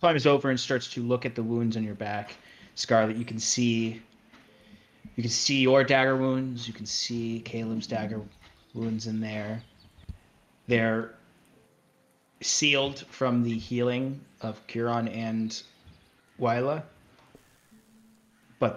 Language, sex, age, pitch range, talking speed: English, male, 30-49, 105-125 Hz, 130 wpm